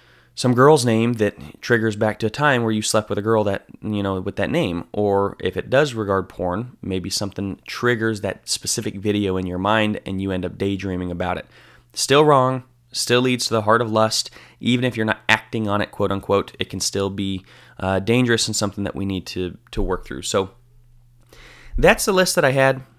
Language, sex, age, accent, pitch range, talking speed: English, male, 20-39, American, 100-120 Hz, 215 wpm